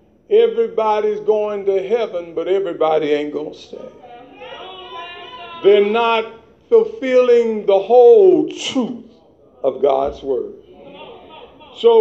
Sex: male